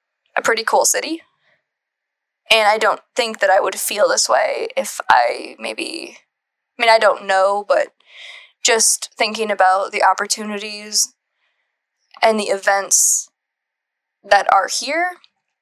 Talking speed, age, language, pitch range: 130 wpm, 20-39, English, 210-310 Hz